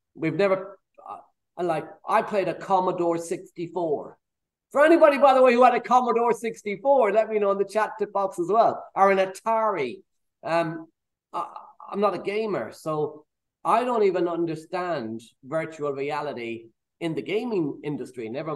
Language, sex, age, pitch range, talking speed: English, male, 30-49, 155-205 Hz, 160 wpm